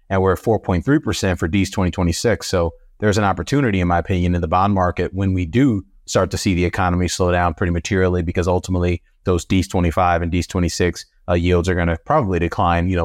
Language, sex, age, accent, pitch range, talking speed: English, male, 30-49, American, 85-100 Hz, 220 wpm